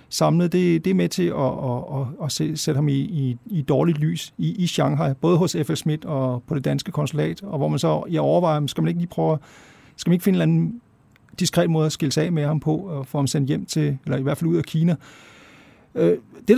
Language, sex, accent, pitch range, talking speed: Danish, male, native, 150-180 Hz, 255 wpm